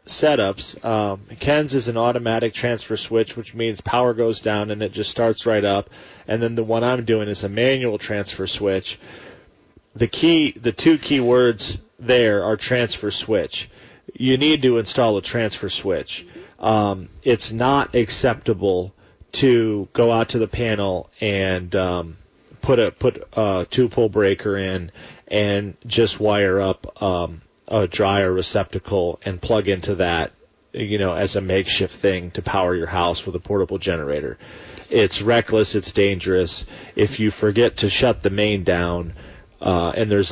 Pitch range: 95-115 Hz